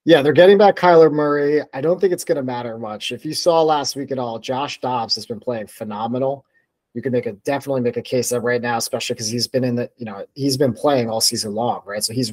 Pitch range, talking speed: 120-165 Hz, 265 wpm